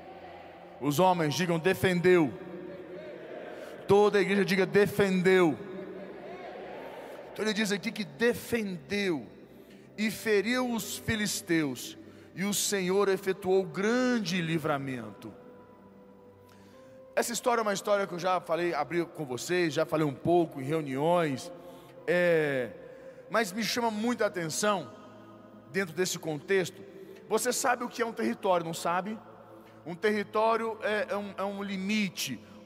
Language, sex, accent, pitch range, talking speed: Portuguese, male, Brazilian, 170-210 Hz, 120 wpm